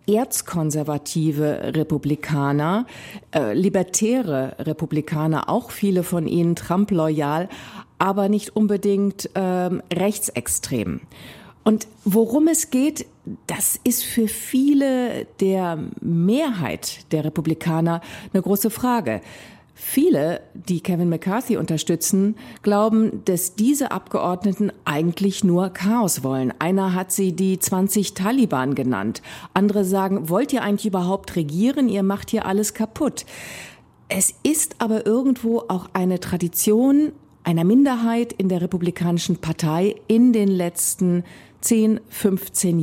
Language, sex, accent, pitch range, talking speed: German, female, German, 170-220 Hz, 110 wpm